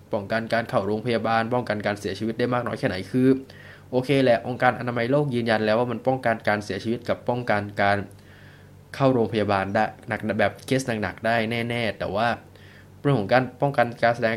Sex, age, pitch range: male, 20-39, 105-130 Hz